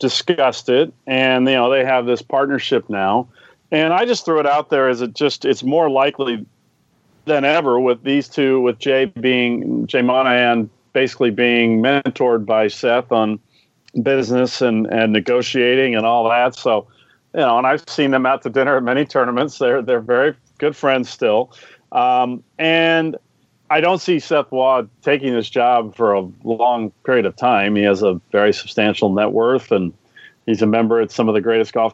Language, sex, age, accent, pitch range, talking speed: English, male, 40-59, American, 115-135 Hz, 185 wpm